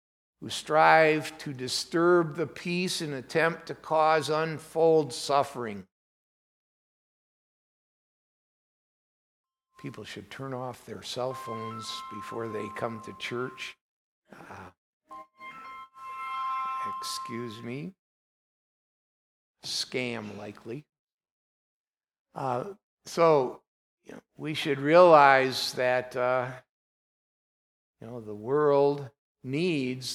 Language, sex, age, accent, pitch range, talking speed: English, male, 60-79, American, 115-155 Hz, 85 wpm